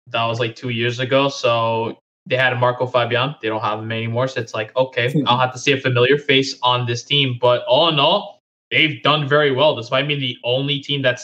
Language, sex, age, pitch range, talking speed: English, male, 20-39, 120-135 Hz, 245 wpm